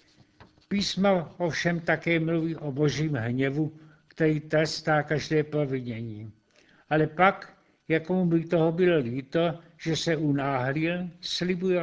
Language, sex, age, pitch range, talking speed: Czech, male, 60-79, 150-170 Hz, 110 wpm